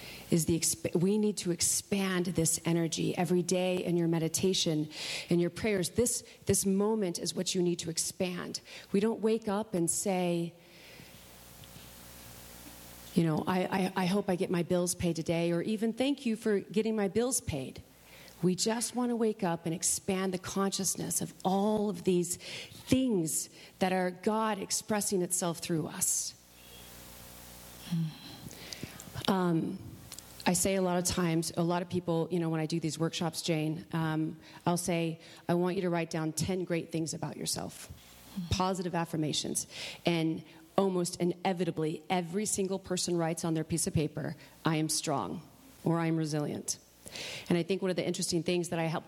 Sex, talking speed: female, 170 wpm